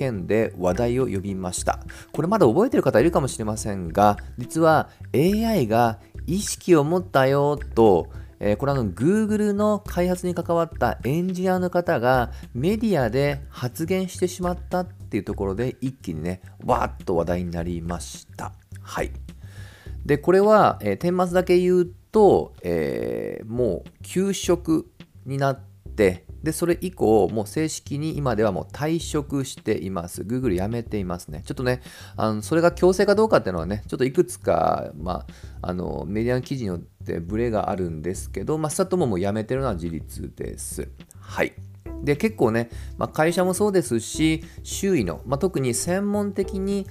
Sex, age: male, 40-59